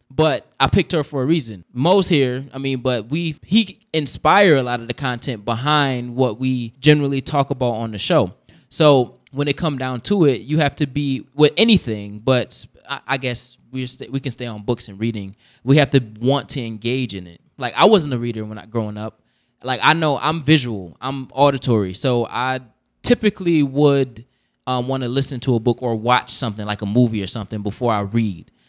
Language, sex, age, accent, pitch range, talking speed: English, male, 20-39, American, 120-145 Hz, 210 wpm